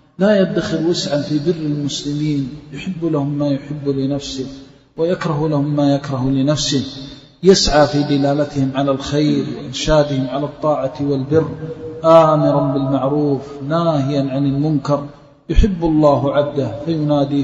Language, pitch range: Arabic, 140-155 Hz